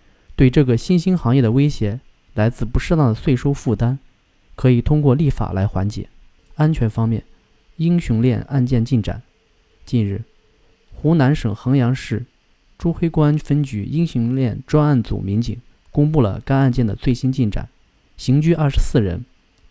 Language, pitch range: Chinese, 105-140 Hz